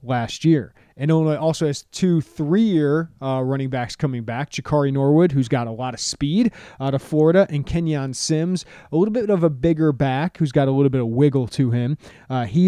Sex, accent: male, American